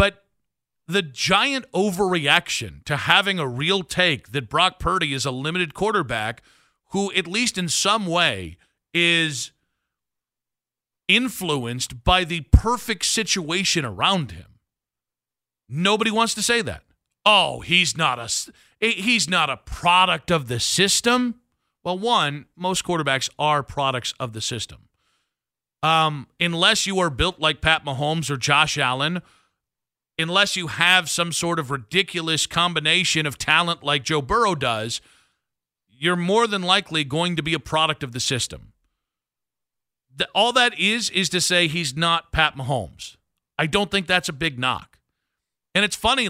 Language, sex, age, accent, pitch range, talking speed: English, male, 40-59, American, 145-190 Hz, 140 wpm